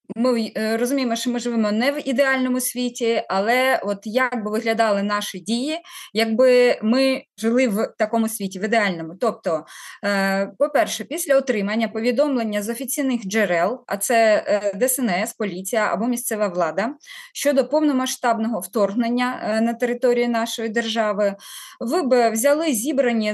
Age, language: 20-39, Ukrainian